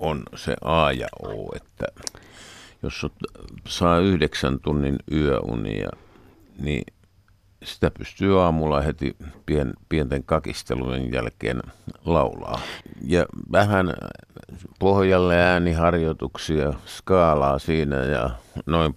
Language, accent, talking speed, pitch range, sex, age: Finnish, native, 90 wpm, 75-95 Hz, male, 50-69